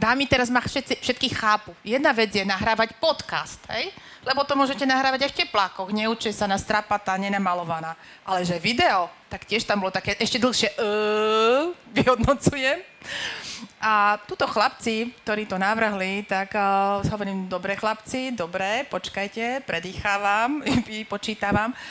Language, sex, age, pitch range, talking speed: Slovak, female, 30-49, 190-235 Hz, 135 wpm